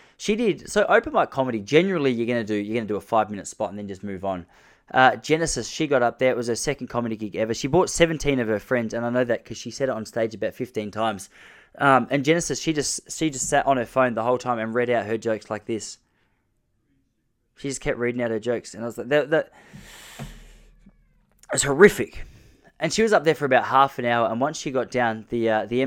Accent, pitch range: Australian, 115-150 Hz